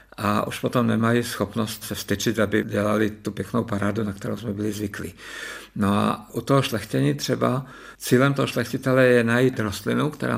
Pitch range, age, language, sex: 105-120 Hz, 50-69, Czech, male